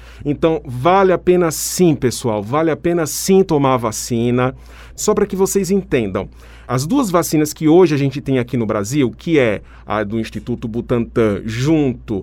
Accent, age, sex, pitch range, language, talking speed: Brazilian, 40-59, male, 130-200 Hz, Portuguese, 175 wpm